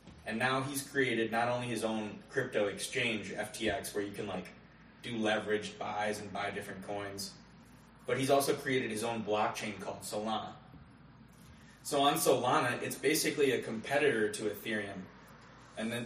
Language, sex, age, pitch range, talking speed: English, male, 20-39, 105-130 Hz, 155 wpm